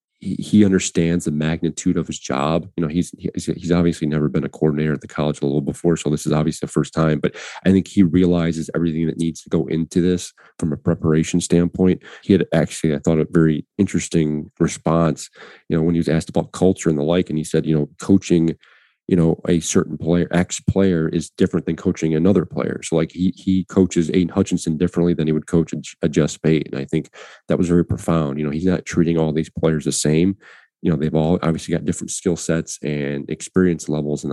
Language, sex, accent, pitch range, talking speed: English, male, American, 75-90 Hz, 225 wpm